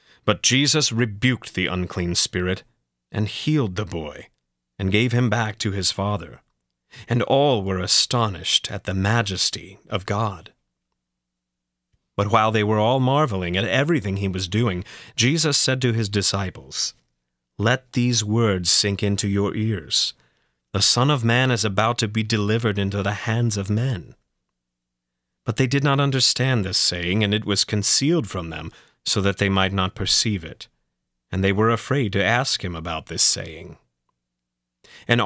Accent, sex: American, male